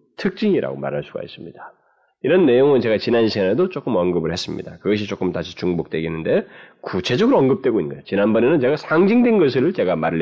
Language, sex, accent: Korean, male, native